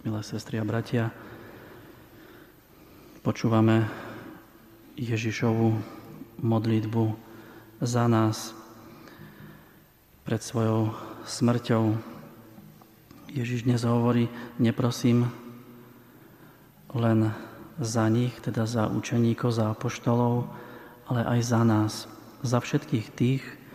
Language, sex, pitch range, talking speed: Slovak, male, 115-120 Hz, 80 wpm